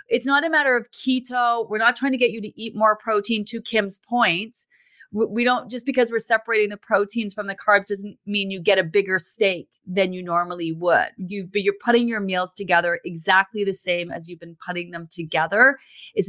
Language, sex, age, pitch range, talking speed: English, female, 30-49, 185-235 Hz, 210 wpm